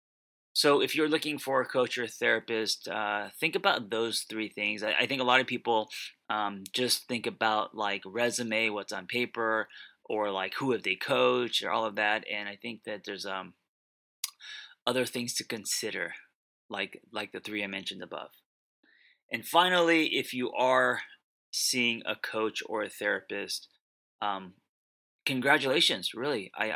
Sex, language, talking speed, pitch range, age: male, English, 165 wpm, 105-120 Hz, 30-49